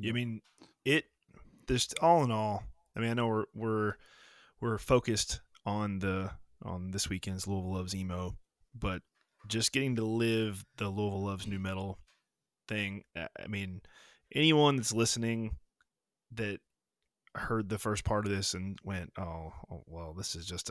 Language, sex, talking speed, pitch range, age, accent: English, male, 155 wpm, 95-115 Hz, 20-39, American